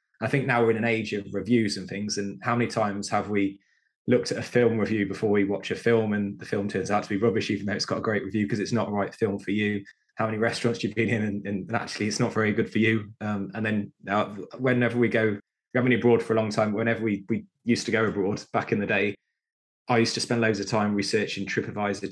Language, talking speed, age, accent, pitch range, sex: English, 270 wpm, 20-39, British, 100-115 Hz, male